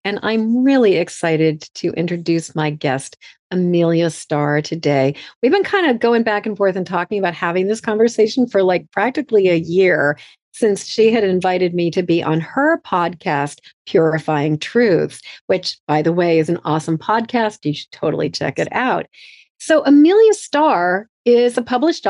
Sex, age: female, 40-59